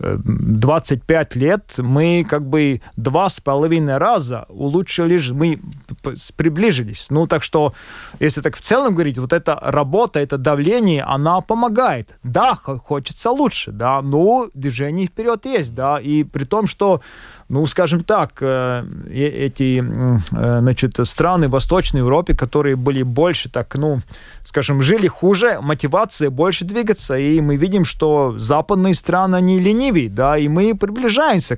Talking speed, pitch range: 140 wpm, 140-185 Hz